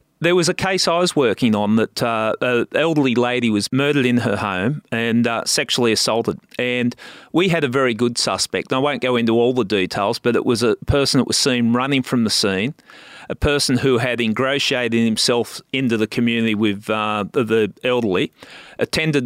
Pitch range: 115-140 Hz